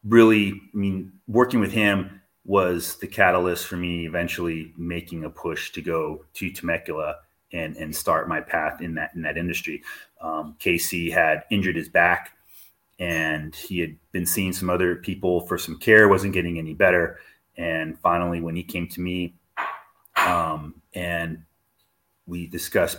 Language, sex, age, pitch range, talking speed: English, male, 30-49, 85-100 Hz, 160 wpm